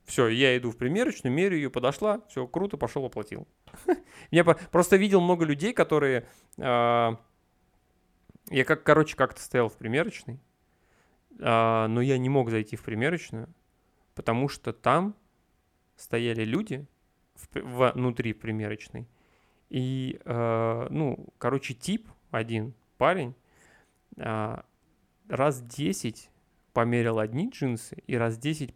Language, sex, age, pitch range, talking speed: Russian, male, 30-49, 115-145 Hz, 110 wpm